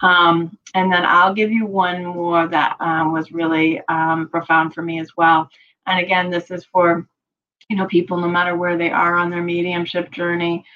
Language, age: English, 30-49